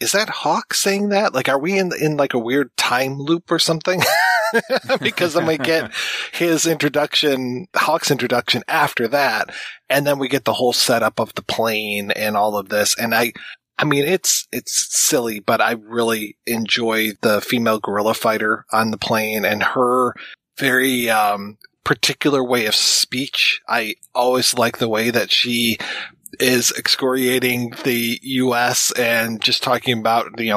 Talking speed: 165 wpm